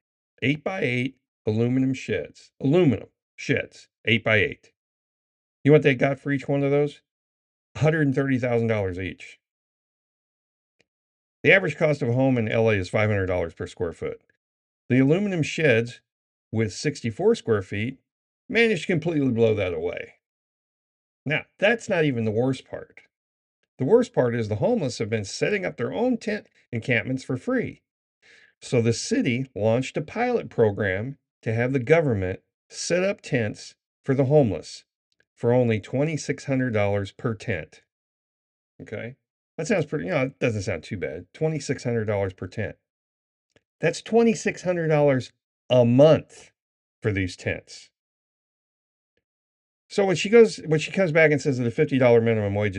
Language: English